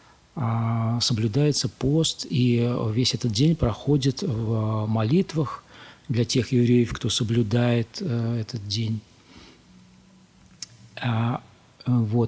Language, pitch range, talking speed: Russian, 125-160 Hz, 80 wpm